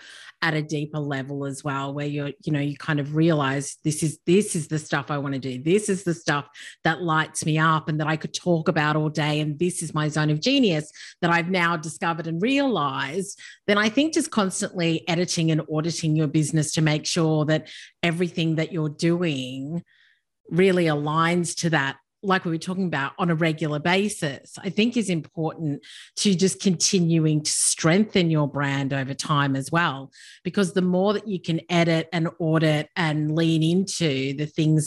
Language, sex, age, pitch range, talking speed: English, female, 30-49, 150-175 Hz, 195 wpm